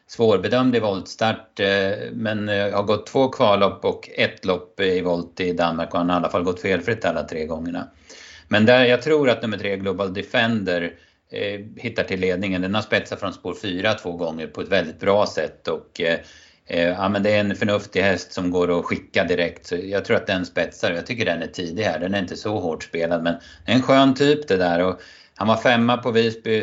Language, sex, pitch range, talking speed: Swedish, male, 85-105 Hz, 215 wpm